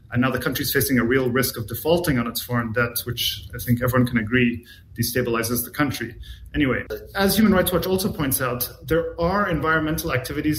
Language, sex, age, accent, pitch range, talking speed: English, male, 30-49, Canadian, 120-150 Hz, 200 wpm